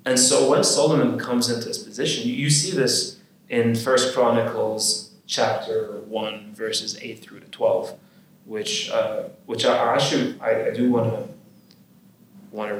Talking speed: 150 wpm